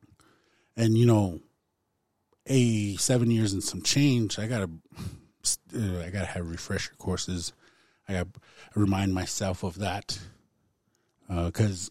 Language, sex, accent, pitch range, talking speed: English, male, American, 90-115 Hz, 120 wpm